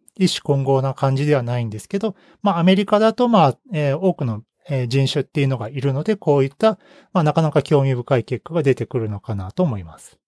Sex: male